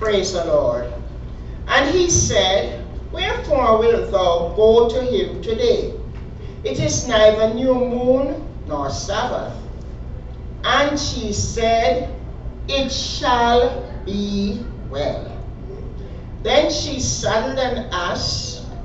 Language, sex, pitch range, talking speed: English, male, 200-260 Hz, 100 wpm